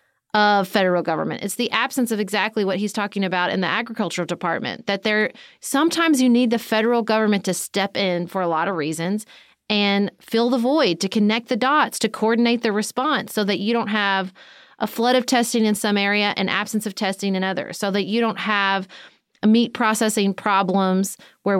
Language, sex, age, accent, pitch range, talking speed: English, female, 30-49, American, 195-235 Hz, 200 wpm